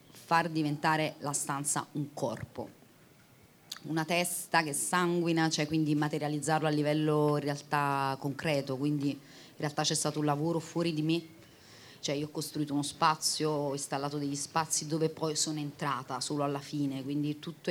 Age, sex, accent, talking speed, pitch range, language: 30-49, female, native, 160 wpm, 145-165 Hz, Italian